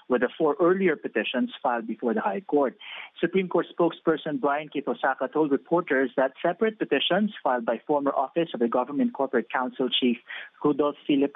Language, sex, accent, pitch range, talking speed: English, male, Filipino, 135-170 Hz, 170 wpm